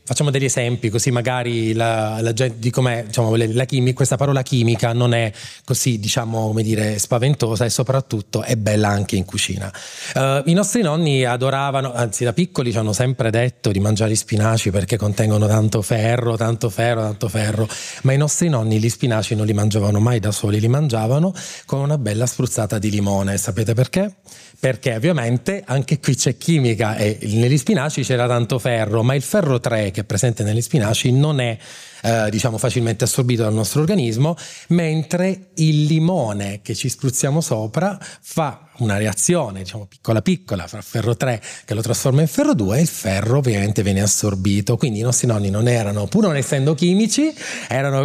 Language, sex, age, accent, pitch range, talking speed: Italian, male, 20-39, native, 110-145 Hz, 180 wpm